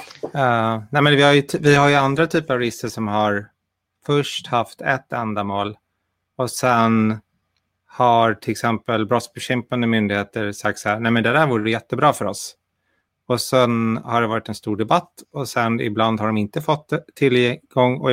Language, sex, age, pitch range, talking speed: Swedish, male, 30-49, 110-130 Hz, 180 wpm